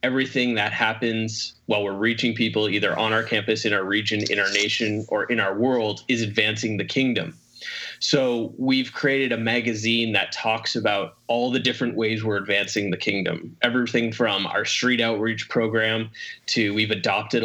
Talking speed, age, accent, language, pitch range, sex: 170 wpm, 20-39, American, English, 105-125 Hz, male